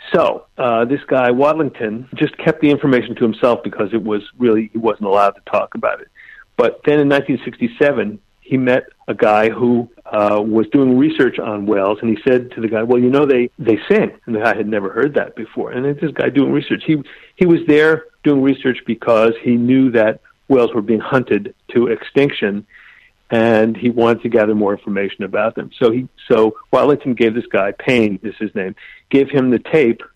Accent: American